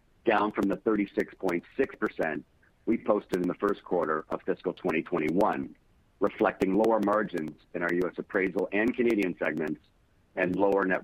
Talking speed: 140 wpm